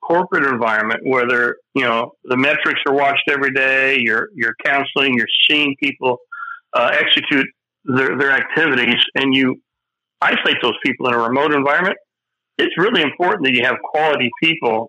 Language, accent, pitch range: English, American, 120-155 Hz